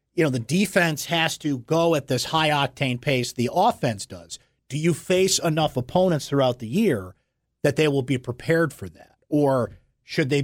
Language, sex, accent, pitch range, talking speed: English, male, American, 120-155 Hz, 190 wpm